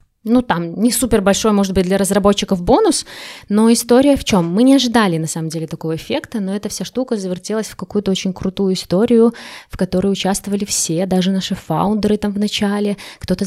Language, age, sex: Russian, 20-39, female